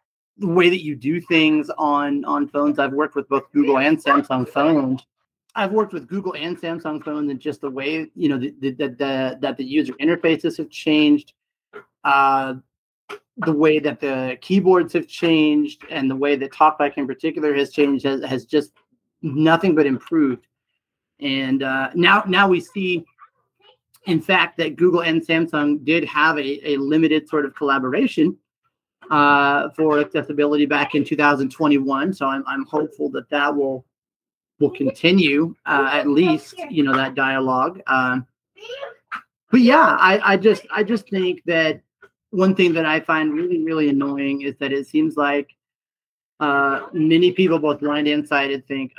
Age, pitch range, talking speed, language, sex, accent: 30-49, 140-170 Hz, 165 wpm, English, male, American